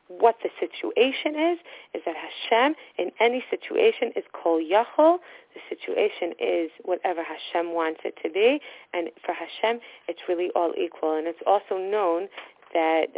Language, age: English, 30-49